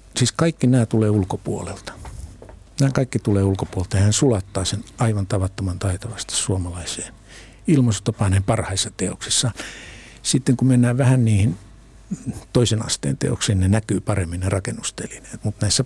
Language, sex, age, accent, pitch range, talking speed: Finnish, male, 60-79, native, 100-125 Hz, 130 wpm